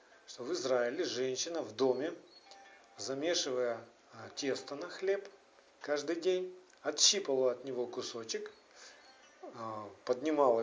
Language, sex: Russian, male